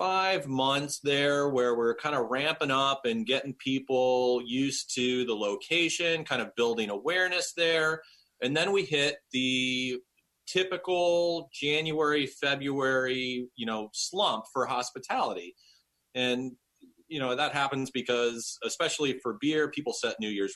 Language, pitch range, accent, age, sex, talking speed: English, 120-155 Hz, American, 30-49, male, 135 wpm